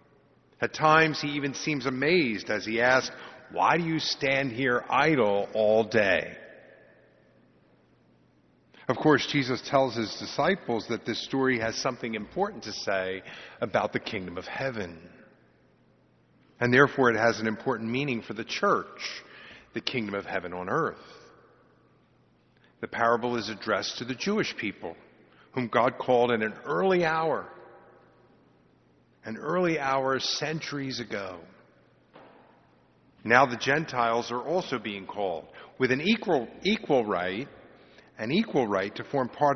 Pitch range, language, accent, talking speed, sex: 115-140 Hz, English, American, 135 wpm, male